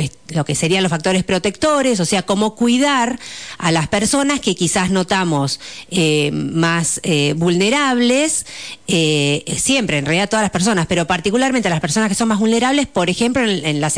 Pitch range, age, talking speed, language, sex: 150-220 Hz, 40-59, 175 wpm, Spanish, female